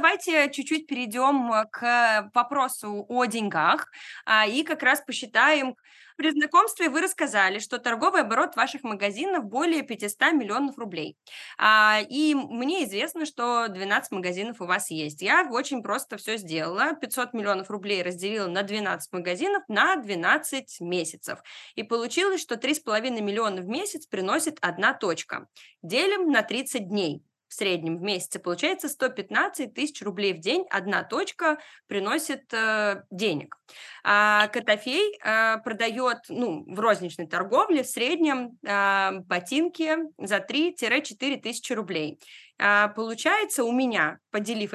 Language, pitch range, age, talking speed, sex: Russian, 205-295 Hz, 20-39, 130 wpm, female